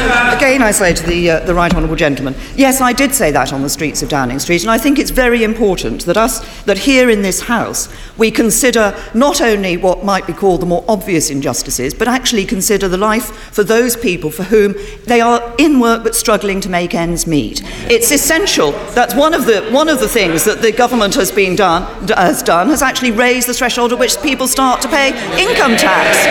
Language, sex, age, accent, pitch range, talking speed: English, female, 50-69, British, 195-270 Hz, 220 wpm